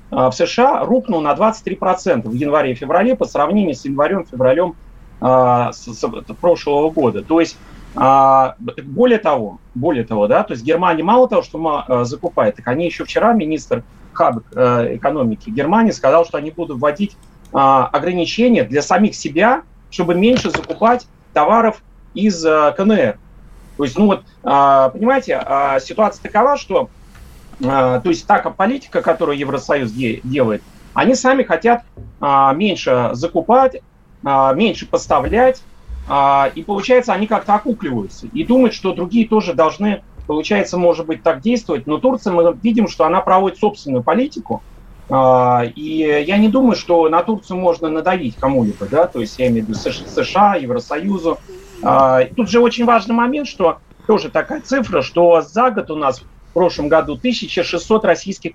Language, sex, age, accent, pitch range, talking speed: Russian, male, 40-59, native, 140-220 Hz, 150 wpm